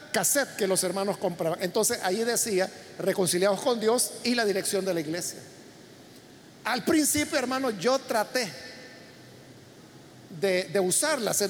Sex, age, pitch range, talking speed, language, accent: male, 50-69, 195-255 Hz, 135 wpm, Spanish, Mexican